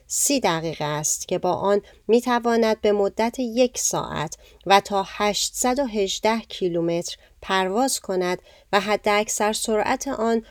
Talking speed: 125 wpm